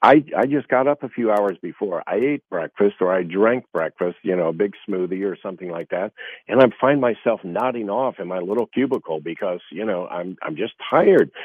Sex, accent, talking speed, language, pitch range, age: male, American, 220 wpm, English, 100-125 Hz, 50-69